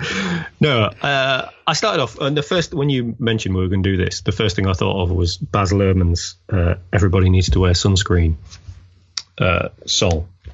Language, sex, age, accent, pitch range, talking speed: English, male, 30-49, British, 90-105 Hz, 195 wpm